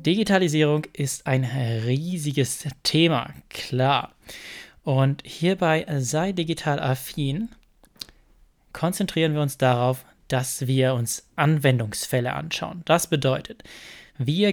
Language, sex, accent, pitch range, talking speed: German, male, German, 135-165 Hz, 95 wpm